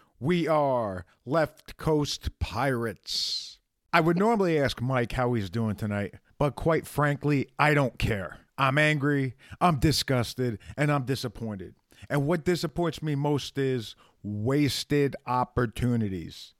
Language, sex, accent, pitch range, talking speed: English, male, American, 125-160 Hz, 125 wpm